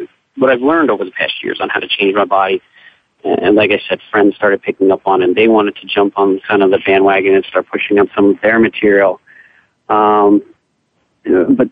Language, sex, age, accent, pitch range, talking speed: English, male, 40-59, American, 100-115 Hz, 220 wpm